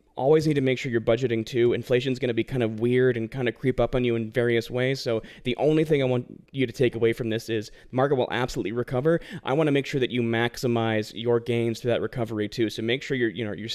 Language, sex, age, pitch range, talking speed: English, male, 20-39, 115-130 Hz, 280 wpm